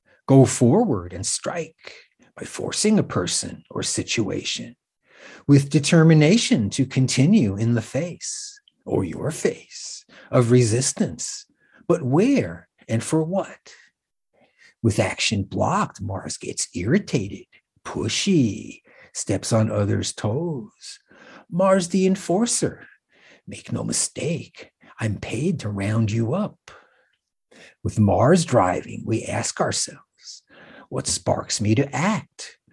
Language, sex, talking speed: English, male, 110 wpm